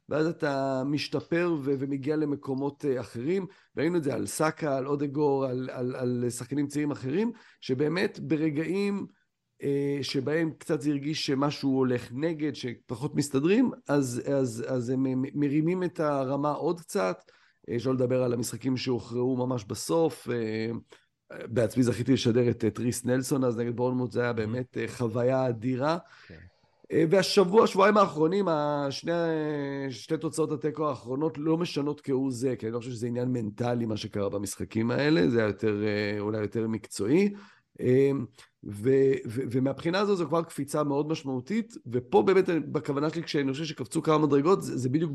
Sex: male